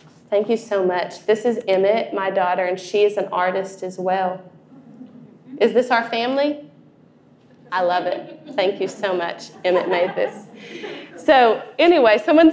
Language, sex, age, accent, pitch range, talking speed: English, female, 20-39, American, 190-230 Hz, 160 wpm